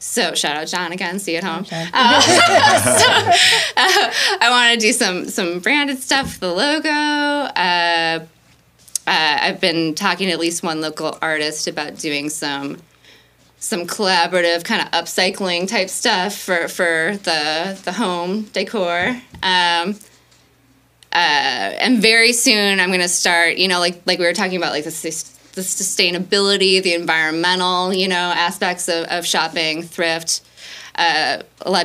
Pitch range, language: 165-195 Hz, English